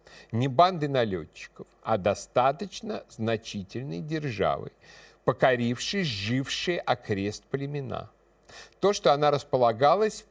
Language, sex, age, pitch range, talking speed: Russian, male, 50-69, 115-170 Hz, 85 wpm